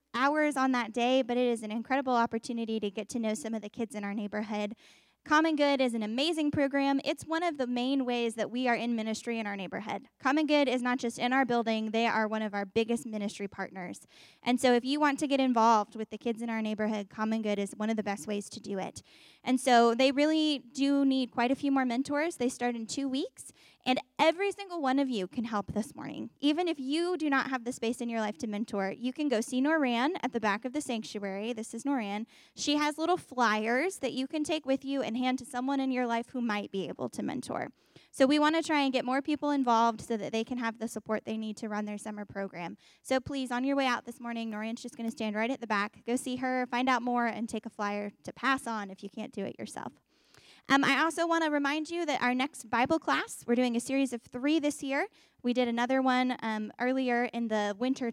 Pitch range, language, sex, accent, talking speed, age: 220-275 Hz, English, female, American, 255 wpm, 10-29